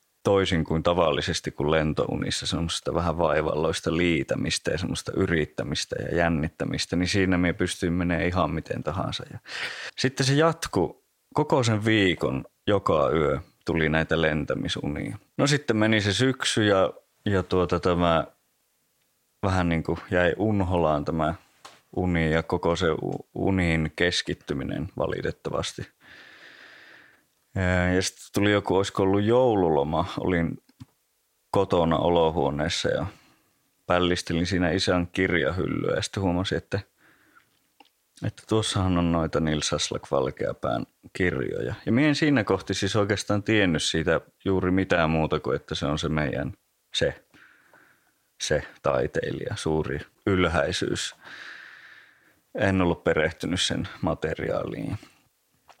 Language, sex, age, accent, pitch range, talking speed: Finnish, male, 20-39, native, 80-95 Hz, 115 wpm